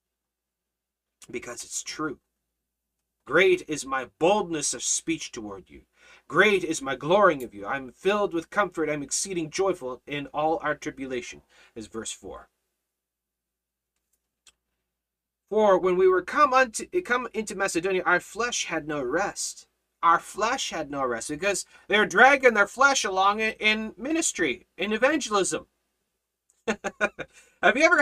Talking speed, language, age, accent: 135 wpm, English, 30-49, American